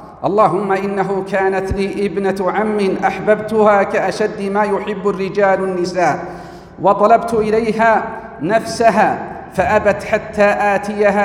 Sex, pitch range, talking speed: male, 185-215 Hz, 95 wpm